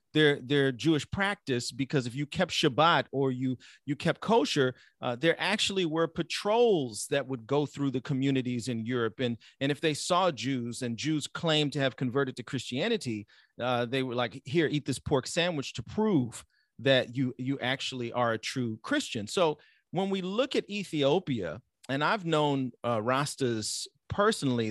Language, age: English, 40-59